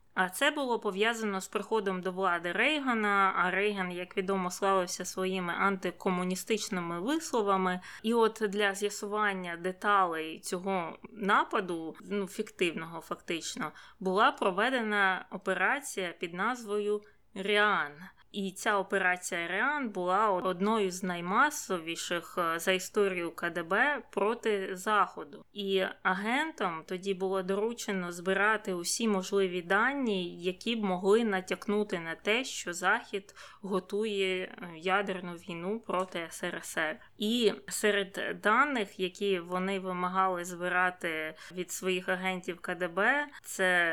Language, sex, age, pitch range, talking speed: Ukrainian, female, 20-39, 180-210 Hz, 110 wpm